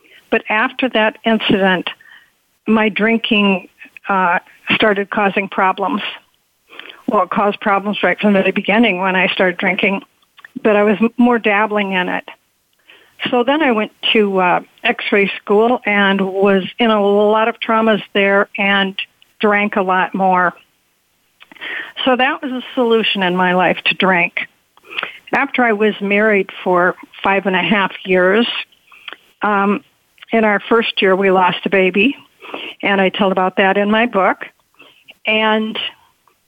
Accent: American